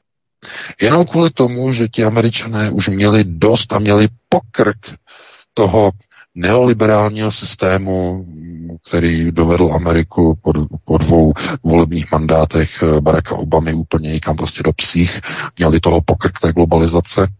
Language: Czech